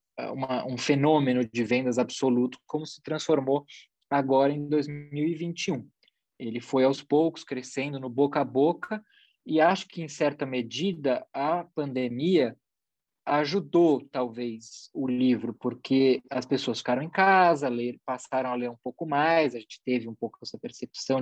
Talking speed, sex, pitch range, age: 145 wpm, male, 120-150 Hz, 20-39